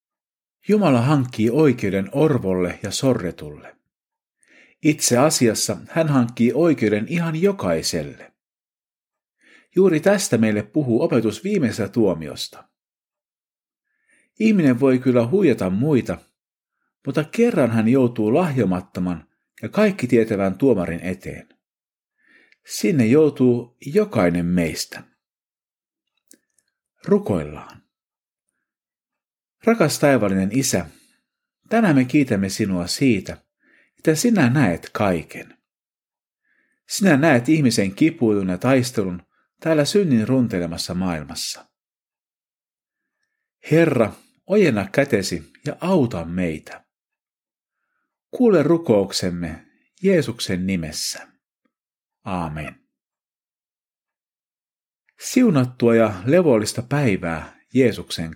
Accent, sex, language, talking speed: native, male, Finnish, 80 wpm